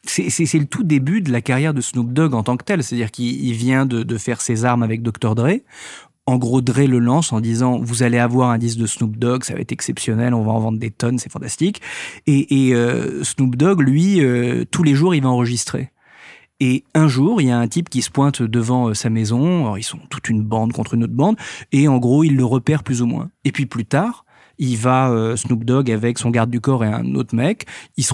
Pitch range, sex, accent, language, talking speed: 115-140 Hz, male, French, French, 260 wpm